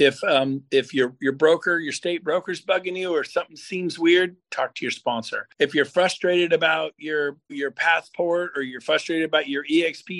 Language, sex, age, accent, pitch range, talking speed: English, male, 50-69, American, 145-185 Hz, 190 wpm